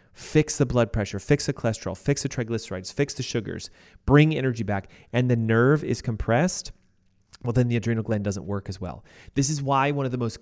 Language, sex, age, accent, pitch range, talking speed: English, male, 30-49, American, 110-140 Hz, 215 wpm